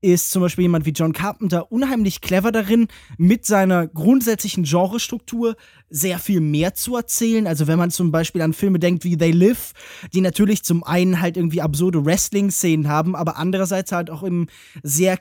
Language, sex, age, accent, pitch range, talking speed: German, male, 20-39, German, 165-210 Hz, 180 wpm